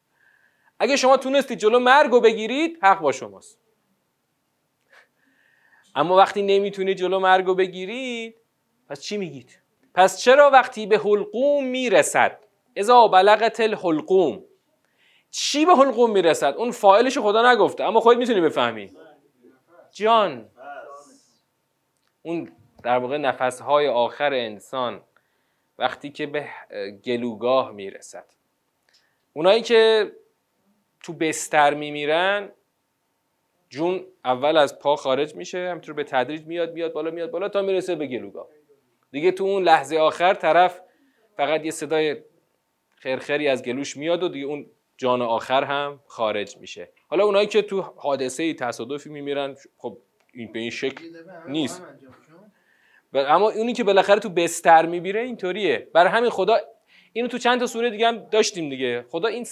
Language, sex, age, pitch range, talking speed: Persian, male, 30-49, 145-225 Hz, 130 wpm